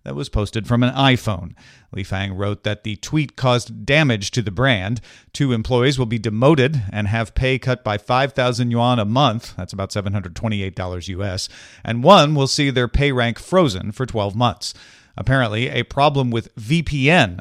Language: English